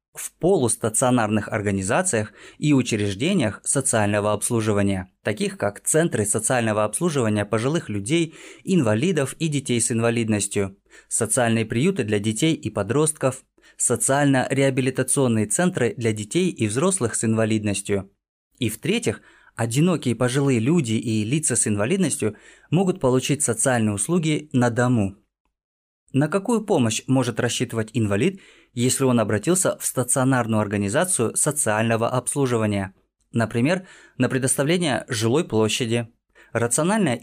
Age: 20-39